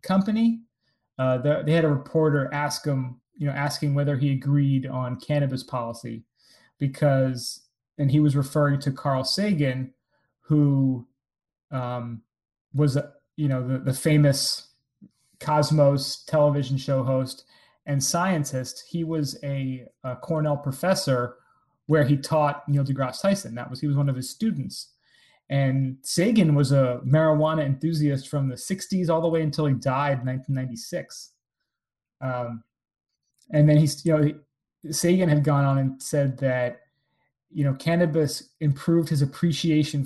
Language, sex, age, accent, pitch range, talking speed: English, male, 30-49, American, 130-150 Hz, 145 wpm